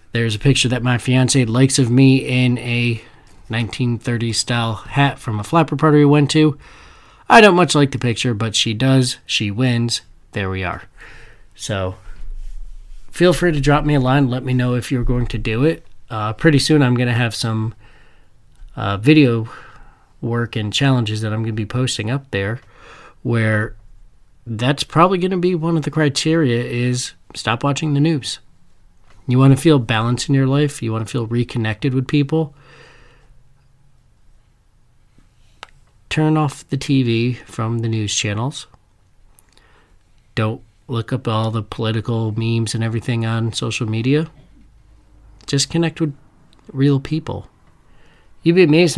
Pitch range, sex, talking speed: 110-140 Hz, male, 160 wpm